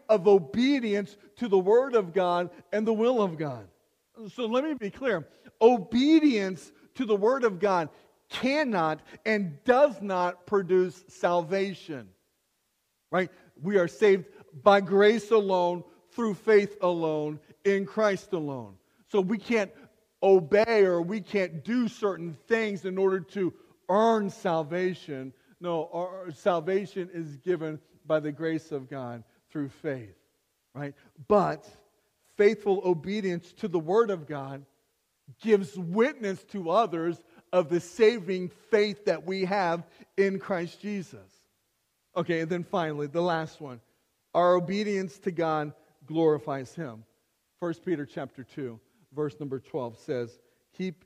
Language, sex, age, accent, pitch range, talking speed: English, male, 50-69, American, 155-205 Hz, 135 wpm